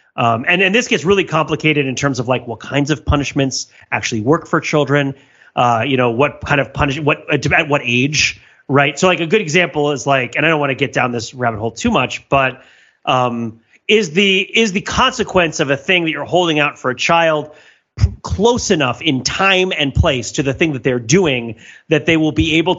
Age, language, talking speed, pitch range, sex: 30-49, English, 225 wpm, 130-175 Hz, male